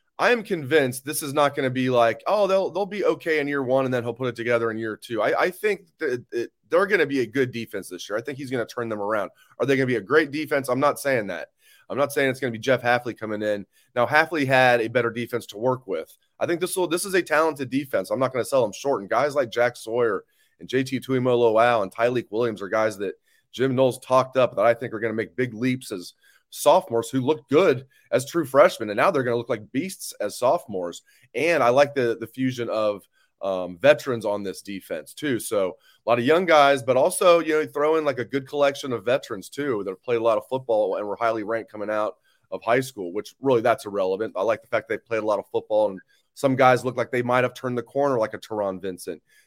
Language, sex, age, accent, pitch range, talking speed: English, male, 30-49, American, 115-140 Hz, 265 wpm